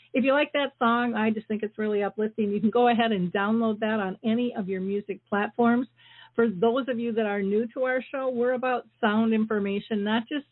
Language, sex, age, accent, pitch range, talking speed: English, female, 50-69, American, 205-240 Hz, 230 wpm